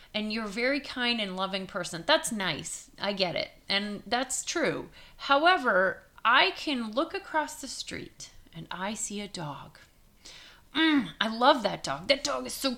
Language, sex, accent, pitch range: English, female, American, 210-315 Hz